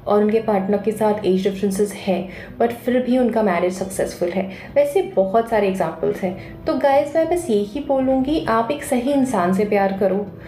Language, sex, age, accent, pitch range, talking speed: Hindi, female, 20-39, native, 195-260 Hz, 190 wpm